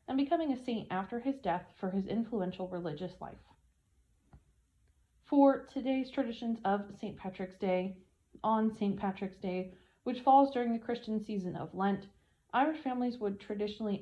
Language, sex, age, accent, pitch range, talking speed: English, female, 30-49, American, 185-235 Hz, 150 wpm